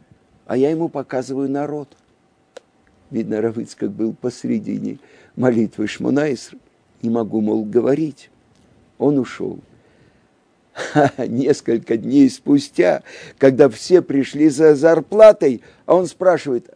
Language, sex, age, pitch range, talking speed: Russian, male, 50-69, 125-170 Hz, 105 wpm